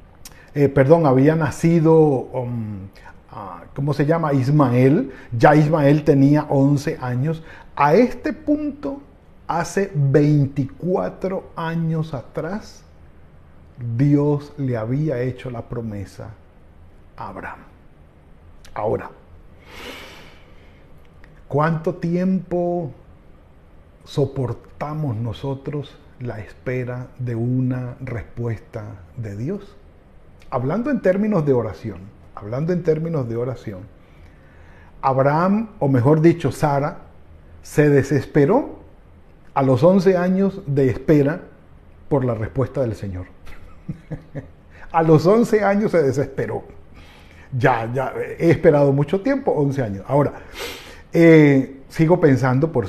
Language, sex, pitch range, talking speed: Spanish, male, 95-155 Hz, 100 wpm